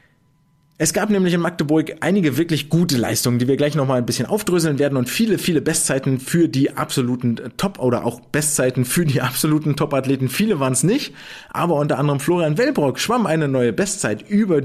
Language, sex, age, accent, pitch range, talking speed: German, male, 30-49, German, 125-165 Hz, 190 wpm